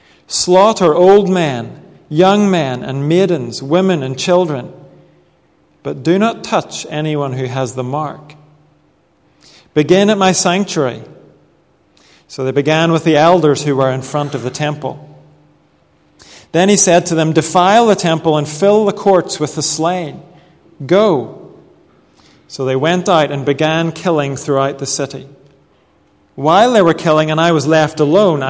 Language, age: English, 40-59